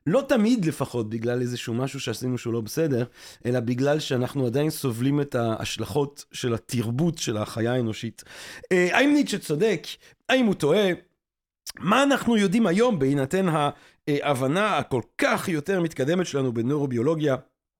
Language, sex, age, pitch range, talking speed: Hebrew, male, 40-59, 120-185 Hz, 140 wpm